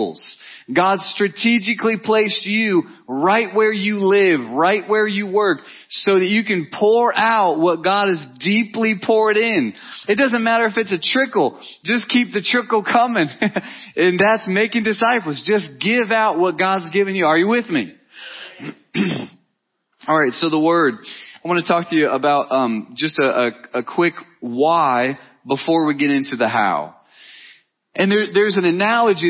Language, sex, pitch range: English, male, 180-225 Hz